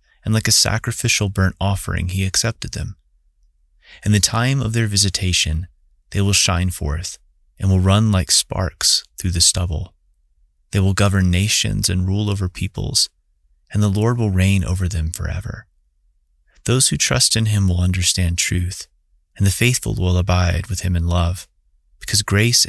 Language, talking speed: English, 165 wpm